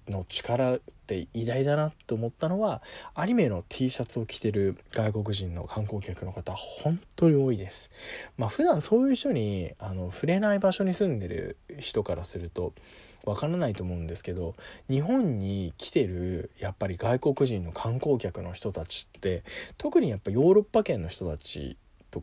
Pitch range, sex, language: 90-155 Hz, male, Japanese